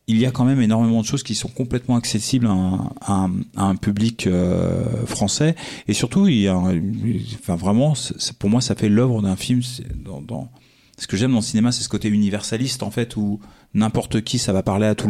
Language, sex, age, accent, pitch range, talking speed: French, male, 40-59, French, 100-125 Hz, 240 wpm